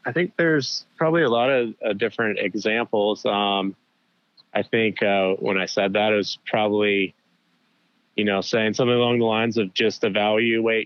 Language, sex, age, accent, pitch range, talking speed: English, male, 20-39, American, 95-110 Hz, 170 wpm